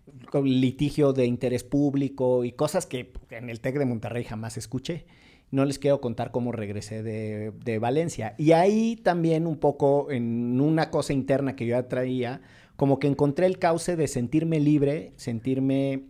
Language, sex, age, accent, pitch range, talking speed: Spanish, male, 40-59, Mexican, 120-155 Hz, 165 wpm